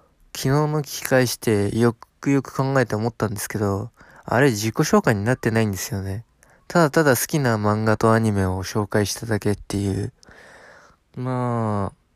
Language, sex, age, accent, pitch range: Japanese, male, 20-39, native, 105-130 Hz